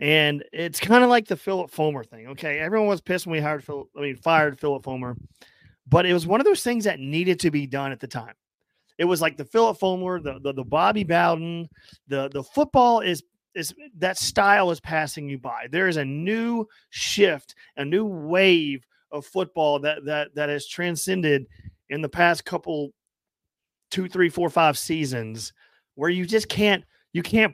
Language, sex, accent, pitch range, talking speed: English, male, American, 145-185 Hz, 195 wpm